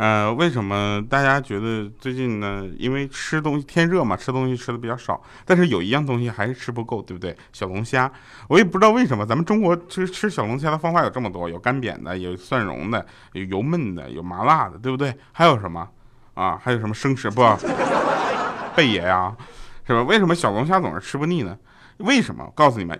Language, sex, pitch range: Chinese, male, 100-165 Hz